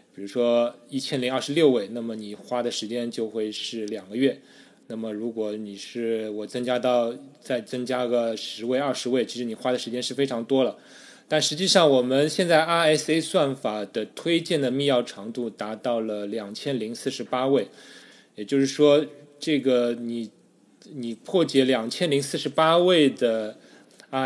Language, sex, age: Chinese, male, 20-39